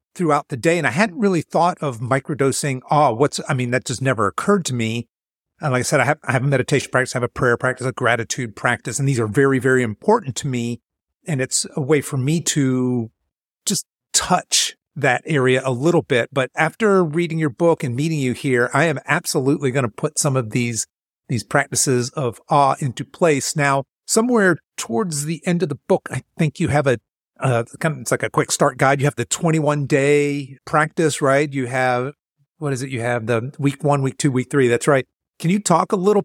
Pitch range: 125-155 Hz